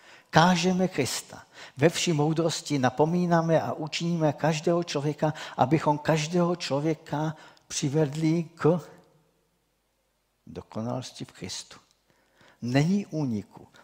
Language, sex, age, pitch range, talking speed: Czech, male, 50-69, 115-155 Hz, 85 wpm